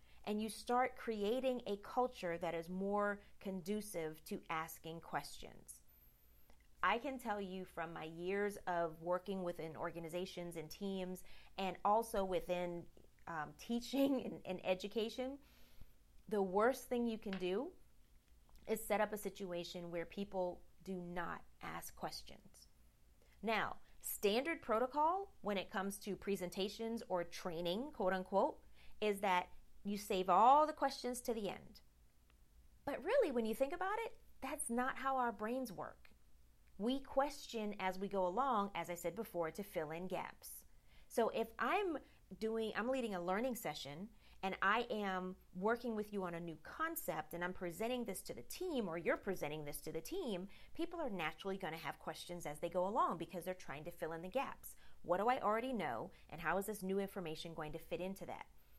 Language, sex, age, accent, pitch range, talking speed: English, female, 30-49, American, 170-225 Hz, 170 wpm